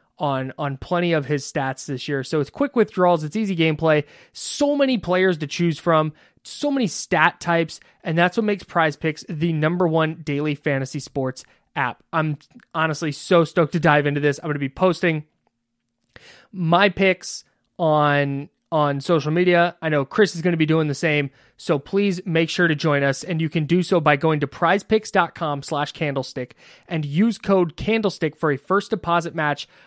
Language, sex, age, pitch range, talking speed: English, male, 20-39, 145-180 Hz, 185 wpm